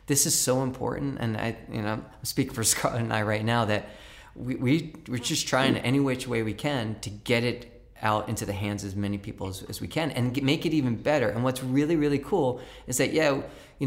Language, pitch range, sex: English, 110-135 Hz, male